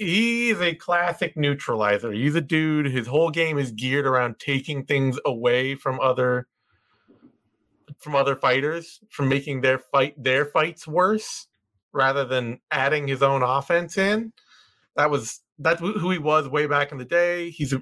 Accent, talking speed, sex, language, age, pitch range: American, 160 wpm, male, English, 30-49, 125-160 Hz